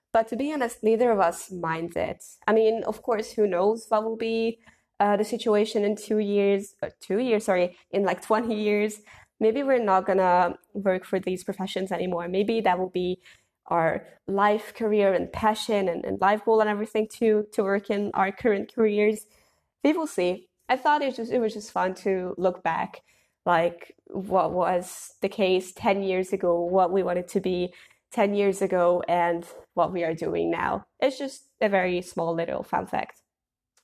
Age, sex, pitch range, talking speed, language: 20-39, female, 185-220 Hz, 195 wpm, English